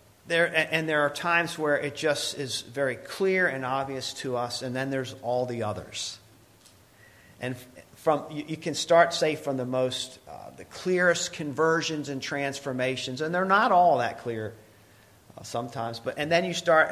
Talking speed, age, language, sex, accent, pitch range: 175 wpm, 50-69, English, male, American, 115-150 Hz